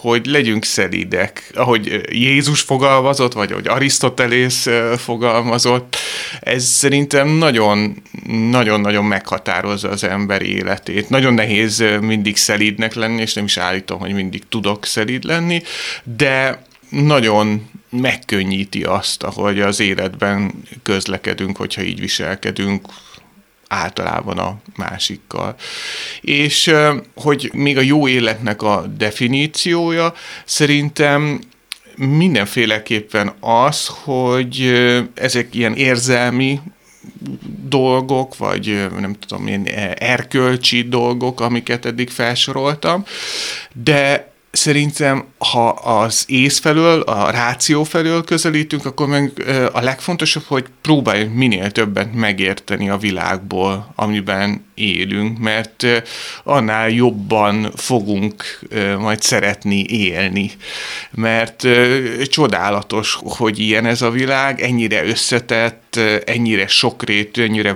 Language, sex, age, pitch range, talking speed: Hungarian, male, 30-49, 105-135 Hz, 100 wpm